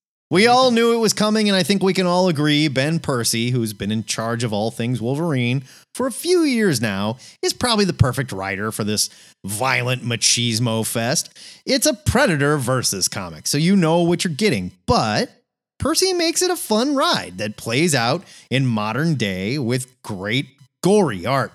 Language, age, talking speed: English, 30-49, 185 wpm